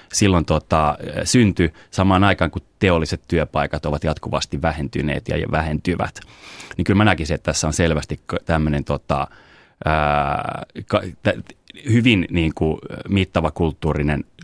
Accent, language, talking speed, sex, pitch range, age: native, Finnish, 130 wpm, male, 75-90 Hz, 30-49